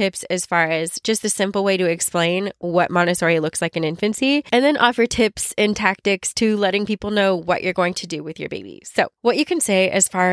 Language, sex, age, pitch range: English, female, 20-39, 175-215 Hz